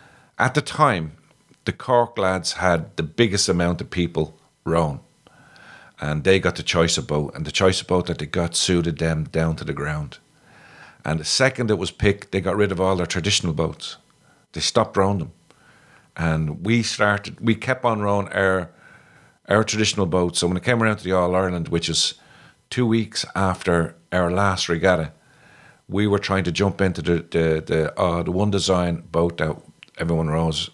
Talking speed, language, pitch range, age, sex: 185 wpm, English, 85-100 Hz, 50-69, male